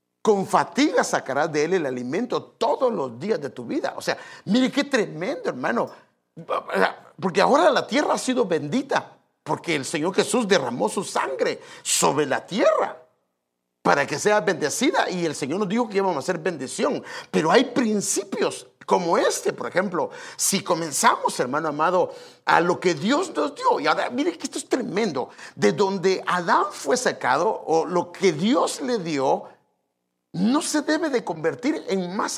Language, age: English, 50-69